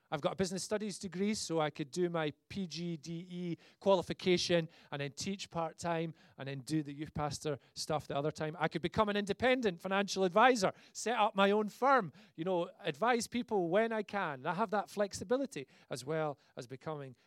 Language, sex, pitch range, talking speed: English, male, 140-200 Hz, 190 wpm